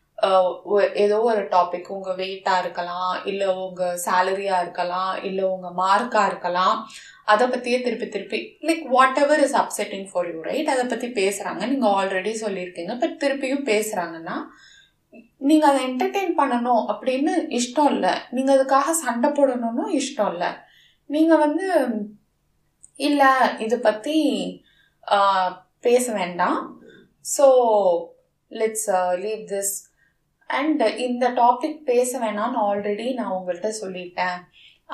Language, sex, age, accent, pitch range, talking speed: Tamil, female, 20-39, native, 195-275 Hz, 115 wpm